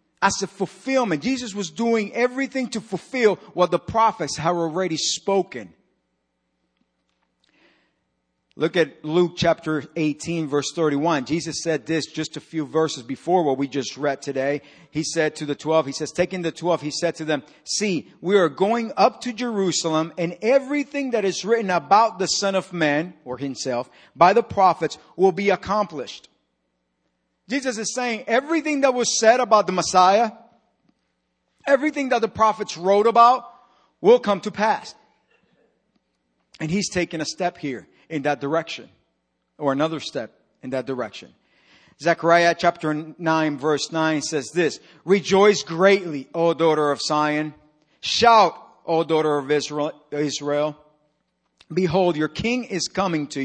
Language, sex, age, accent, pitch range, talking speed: English, male, 50-69, American, 150-200 Hz, 150 wpm